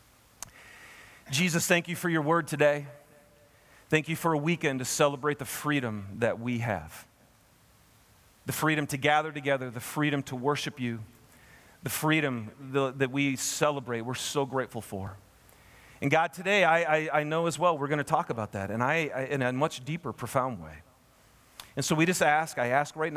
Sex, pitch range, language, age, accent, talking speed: male, 110-155 Hz, English, 40-59, American, 185 wpm